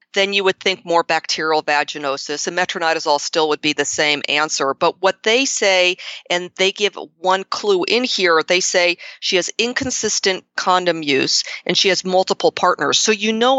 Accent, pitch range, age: American, 155-200 Hz, 40-59